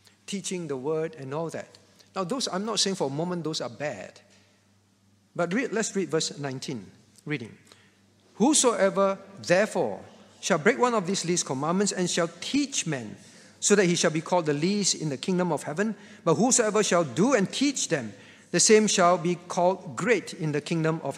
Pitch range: 155-210 Hz